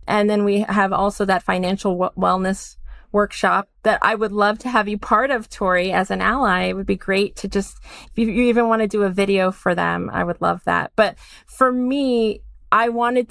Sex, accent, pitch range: female, American, 185-225 Hz